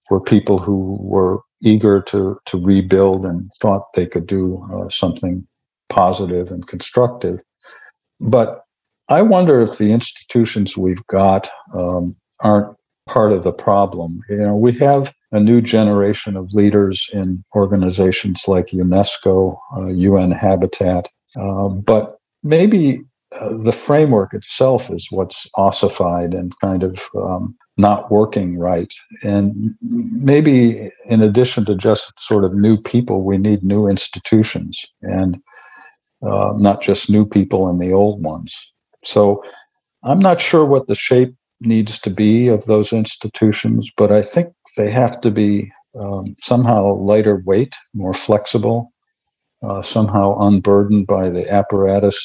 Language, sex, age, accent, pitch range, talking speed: English, male, 60-79, American, 95-110 Hz, 140 wpm